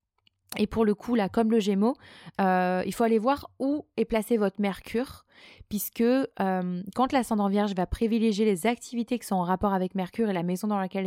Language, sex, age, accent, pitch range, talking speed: French, female, 20-39, French, 190-235 Hz, 205 wpm